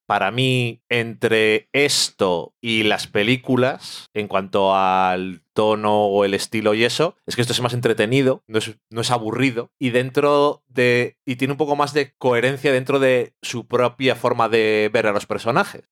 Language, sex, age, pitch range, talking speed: Spanish, male, 30-49, 110-135 Hz, 175 wpm